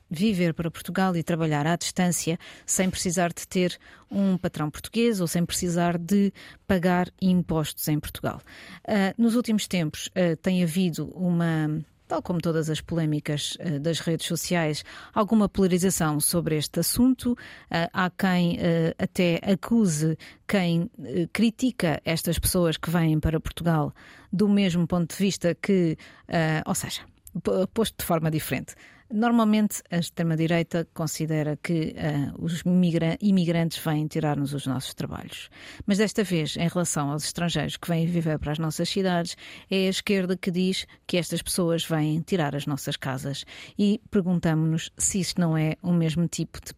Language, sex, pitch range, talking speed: Portuguese, female, 160-185 Hz, 150 wpm